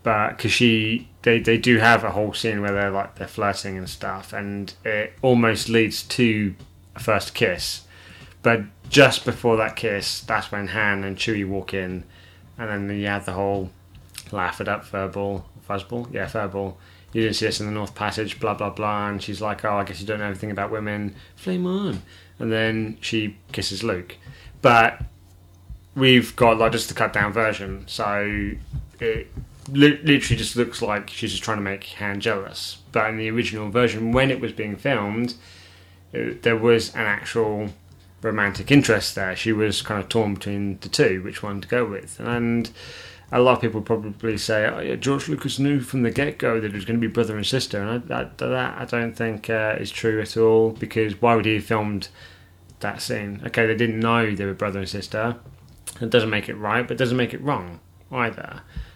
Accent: British